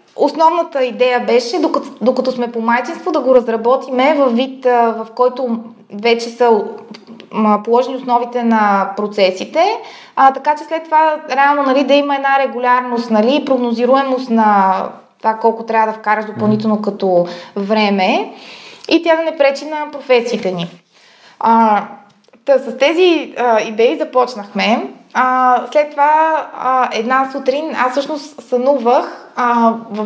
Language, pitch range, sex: Bulgarian, 225-280 Hz, female